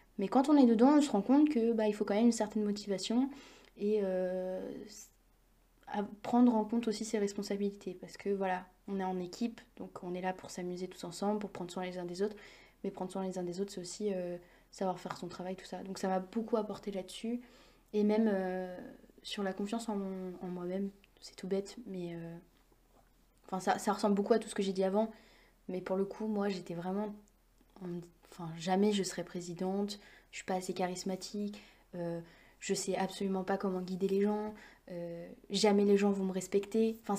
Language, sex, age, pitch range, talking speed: French, female, 20-39, 185-220 Hz, 215 wpm